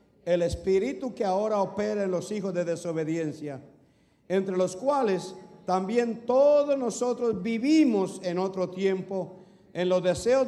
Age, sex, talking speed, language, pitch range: 50-69, male, 130 wpm, English, 175-225 Hz